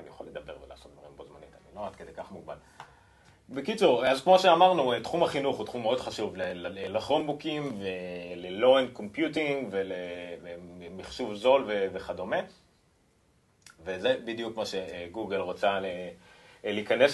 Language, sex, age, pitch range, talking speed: Hebrew, male, 30-49, 95-150 Hz, 125 wpm